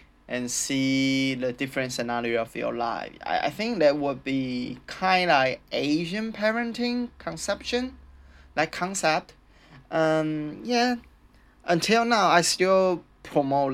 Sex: male